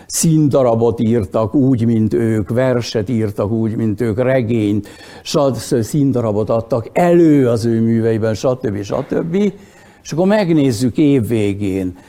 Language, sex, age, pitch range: Hungarian, male, 60-79, 110-150 Hz